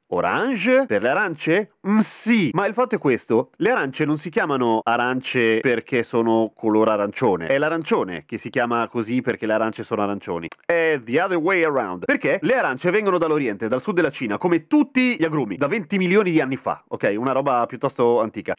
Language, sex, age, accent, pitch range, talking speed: Italian, male, 30-49, native, 120-175 Hz, 200 wpm